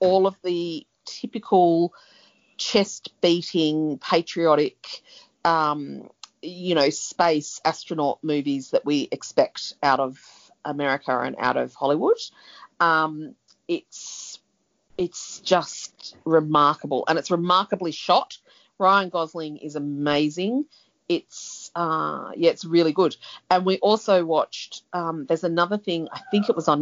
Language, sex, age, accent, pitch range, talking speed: English, female, 40-59, Australian, 145-180 Hz, 120 wpm